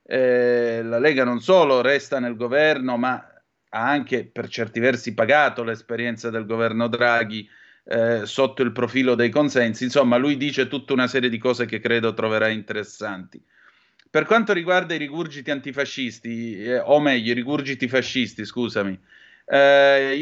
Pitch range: 115-140 Hz